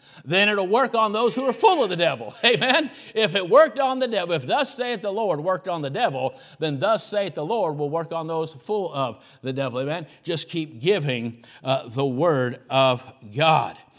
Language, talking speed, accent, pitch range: English, 210 wpm, American, 140-205 Hz